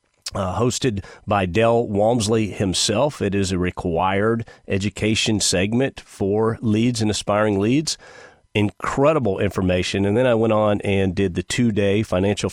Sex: male